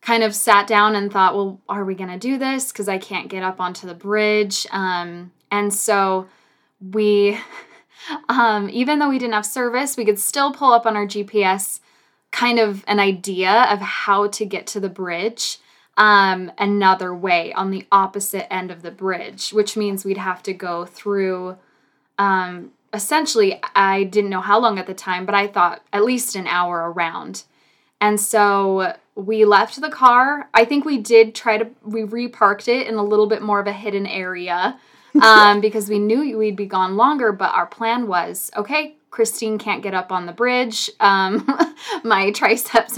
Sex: female